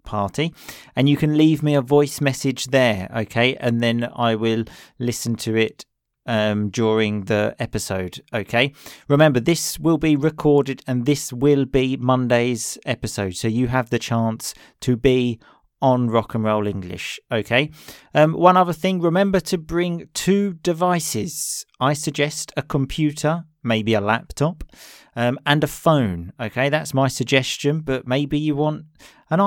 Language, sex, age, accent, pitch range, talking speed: English, male, 40-59, British, 115-150 Hz, 155 wpm